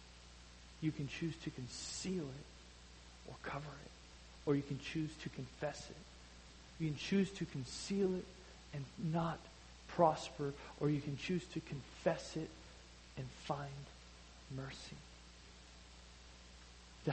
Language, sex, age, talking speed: English, male, 40-59, 125 wpm